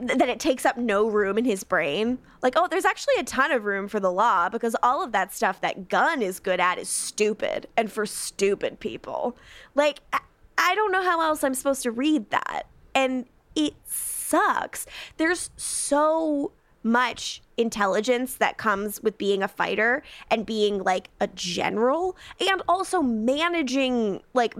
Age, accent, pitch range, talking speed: 10-29, American, 200-275 Hz, 170 wpm